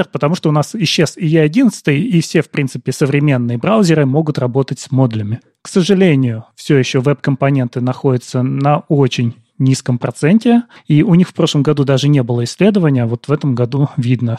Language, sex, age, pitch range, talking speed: Russian, male, 30-49, 130-165 Hz, 175 wpm